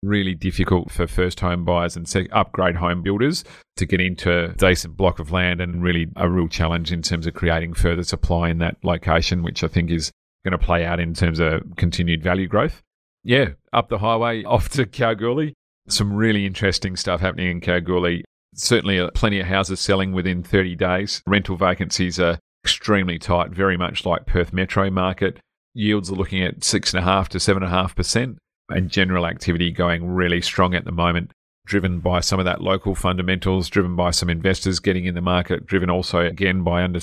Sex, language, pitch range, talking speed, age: male, English, 85-95 Hz, 185 wpm, 40-59